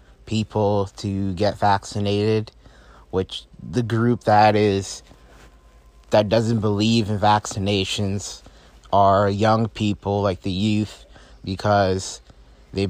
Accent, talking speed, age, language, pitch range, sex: American, 100 wpm, 30-49, English, 95-105 Hz, male